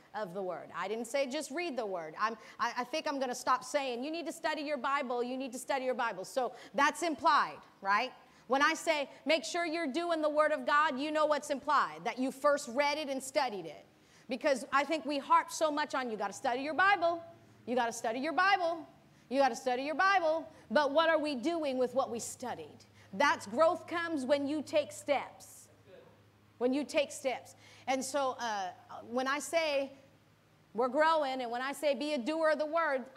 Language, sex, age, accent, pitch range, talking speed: English, female, 40-59, American, 260-320 Hz, 220 wpm